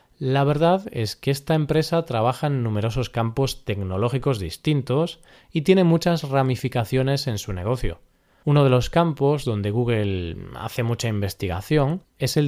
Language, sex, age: Spanish, male, 20-39